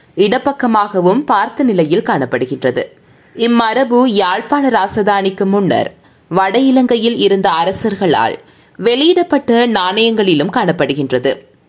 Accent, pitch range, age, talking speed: native, 195-265 Hz, 20-39, 75 wpm